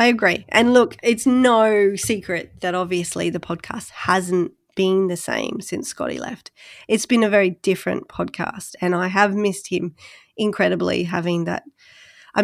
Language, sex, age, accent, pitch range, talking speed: English, female, 30-49, Australian, 170-200 Hz, 160 wpm